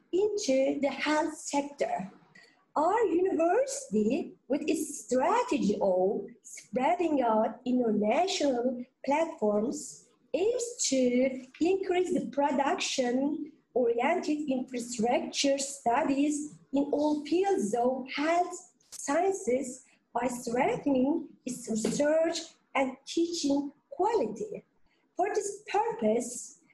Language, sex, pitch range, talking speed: Turkish, female, 250-335 Hz, 85 wpm